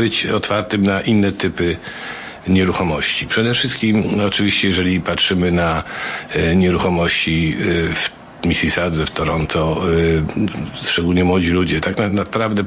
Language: Polish